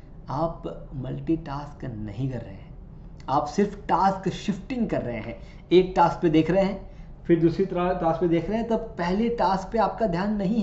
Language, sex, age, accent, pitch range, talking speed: Hindi, male, 20-39, native, 130-170 Hz, 190 wpm